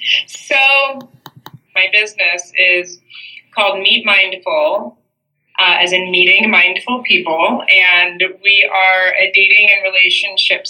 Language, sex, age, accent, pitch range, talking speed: English, female, 20-39, American, 180-210 Hz, 110 wpm